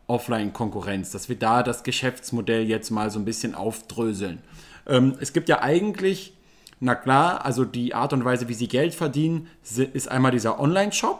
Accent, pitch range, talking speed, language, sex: German, 125-155 Hz, 170 wpm, German, male